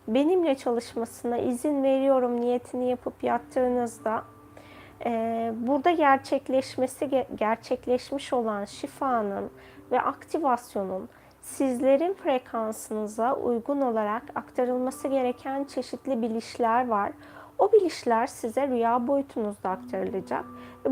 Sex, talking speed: female, 85 wpm